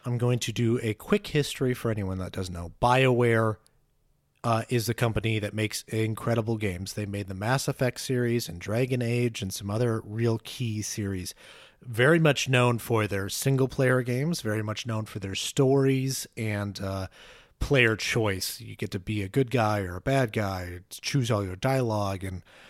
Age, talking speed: 30-49, 180 wpm